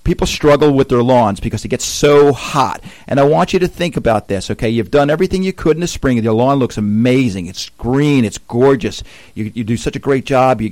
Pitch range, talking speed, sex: 115-145 Hz, 245 wpm, male